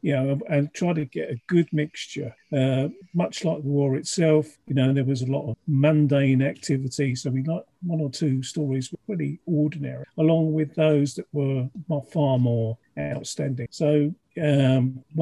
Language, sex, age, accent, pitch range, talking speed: English, male, 50-69, British, 135-155 Hz, 175 wpm